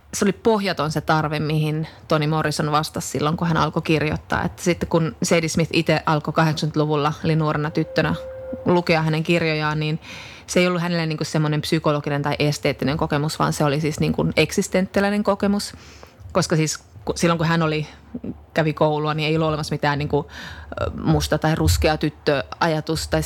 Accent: native